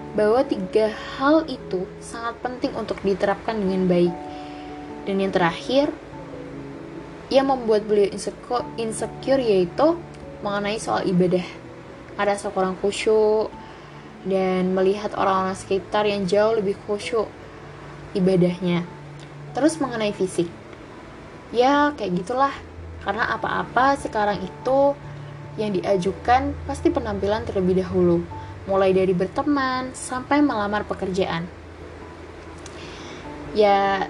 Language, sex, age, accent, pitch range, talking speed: Indonesian, female, 10-29, native, 185-230 Hz, 100 wpm